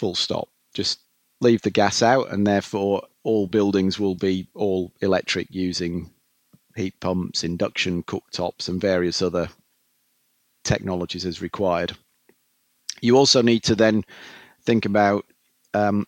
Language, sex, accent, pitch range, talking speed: English, male, British, 95-110 Hz, 125 wpm